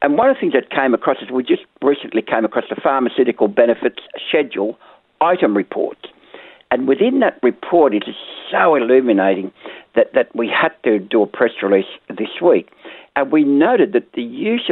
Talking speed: 185 wpm